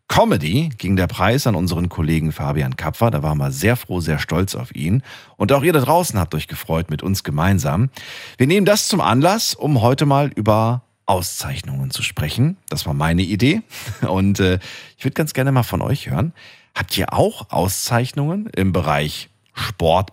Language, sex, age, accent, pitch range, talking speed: German, male, 40-59, German, 85-125 Hz, 185 wpm